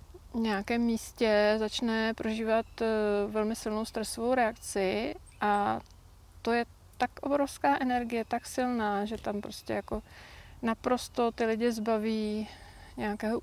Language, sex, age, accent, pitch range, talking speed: Czech, female, 30-49, native, 190-225 Hz, 115 wpm